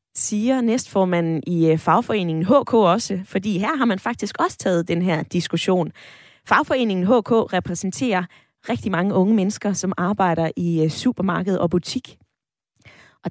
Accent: native